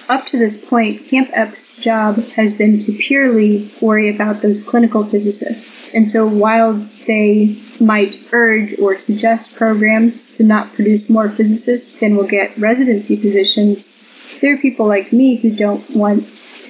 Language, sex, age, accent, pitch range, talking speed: English, female, 10-29, American, 210-235 Hz, 160 wpm